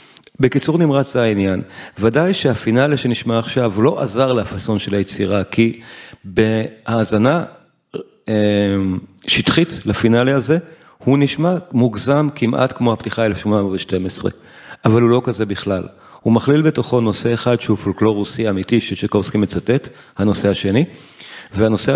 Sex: male